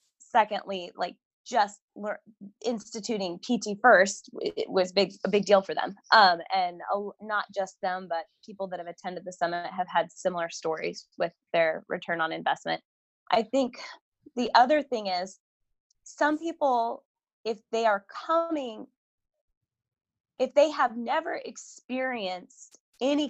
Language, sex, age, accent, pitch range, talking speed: English, female, 20-39, American, 190-245 Hz, 135 wpm